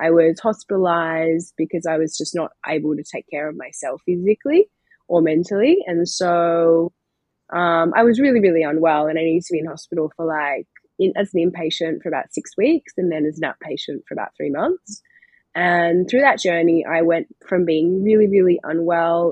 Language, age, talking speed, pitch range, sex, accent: English, 20-39, 195 wpm, 160-185 Hz, female, Australian